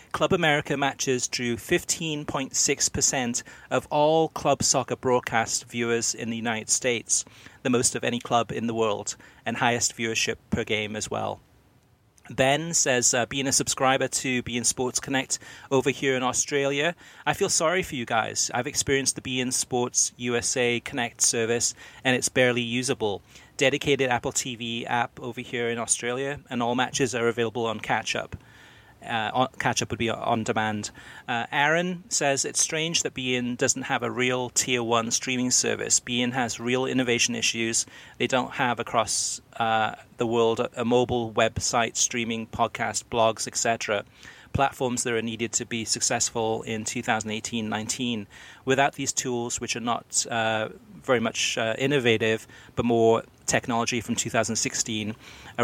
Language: English